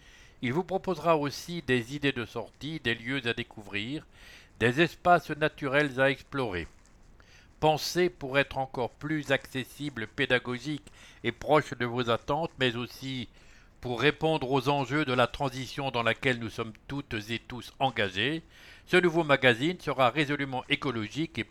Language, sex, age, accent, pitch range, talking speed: English, male, 60-79, French, 120-155 Hz, 150 wpm